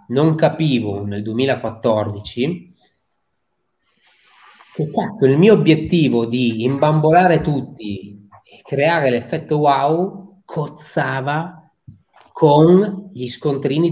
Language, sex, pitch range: Italian, male, 120-175 Hz